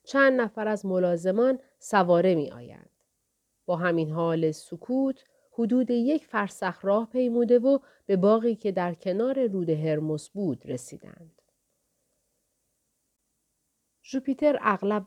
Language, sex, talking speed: Persian, female, 110 wpm